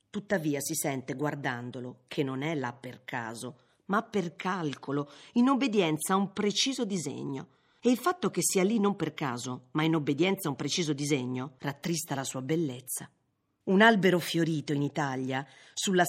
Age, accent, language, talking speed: 40-59, native, Italian, 170 wpm